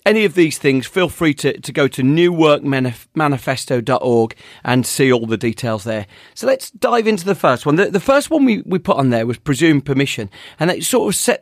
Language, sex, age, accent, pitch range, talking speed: English, male, 40-59, British, 120-155 Hz, 215 wpm